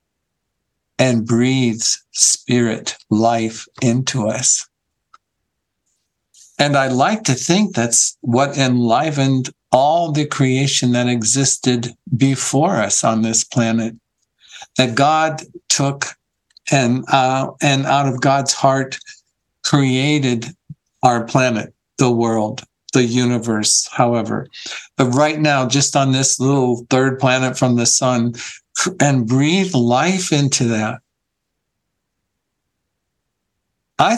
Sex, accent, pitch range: male, American, 120-140 Hz